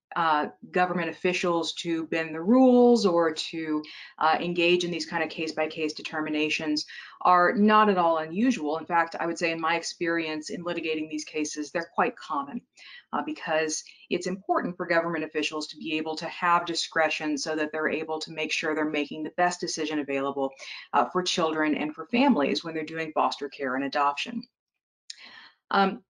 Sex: female